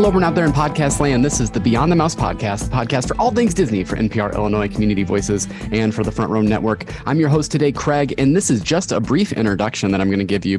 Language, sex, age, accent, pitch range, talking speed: English, male, 30-49, American, 100-130 Hz, 280 wpm